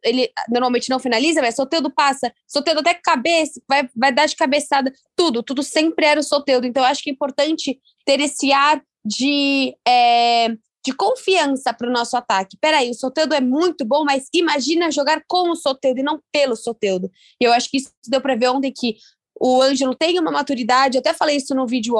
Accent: Brazilian